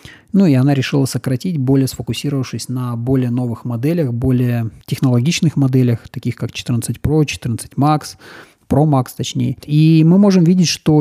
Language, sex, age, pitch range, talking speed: Russian, male, 20-39, 120-140 Hz, 155 wpm